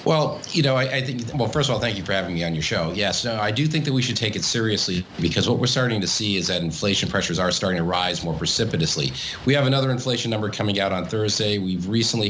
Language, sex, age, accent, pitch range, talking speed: English, male, 40-59, American, 100-130 Hz, 270 wpm